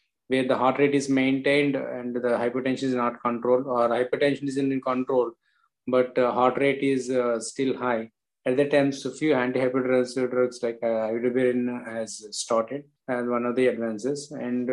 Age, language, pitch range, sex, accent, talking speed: 20-39, English, 120-135 Hz, male, Indian, 185 wpm